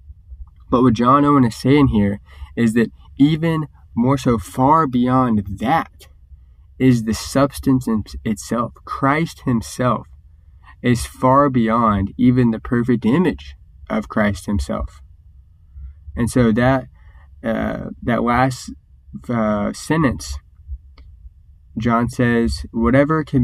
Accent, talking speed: American, 110 wpm